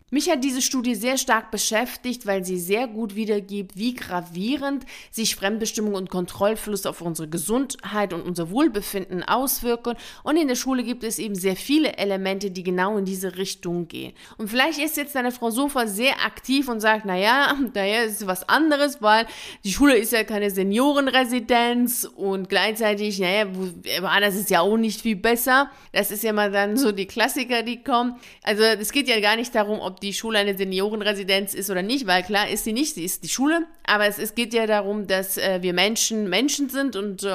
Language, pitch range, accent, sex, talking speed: German, 195-240 Hz, German, female, 195 wpm